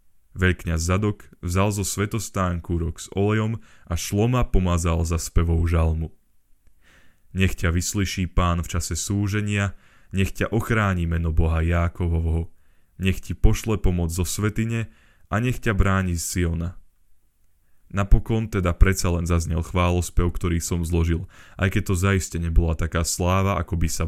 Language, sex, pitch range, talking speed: Slovak, male, 85-100 Hz, 140 wpm